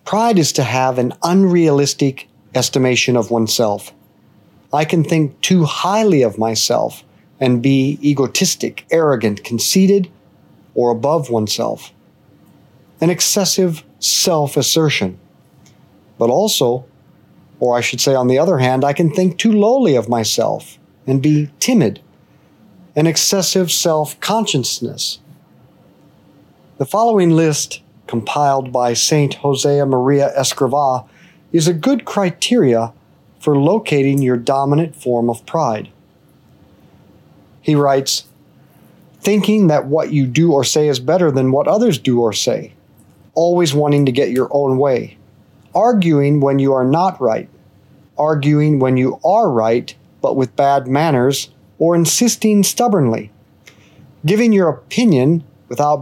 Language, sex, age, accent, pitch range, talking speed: English, male, 40-59, American, 130-170 Hz, 125 wpm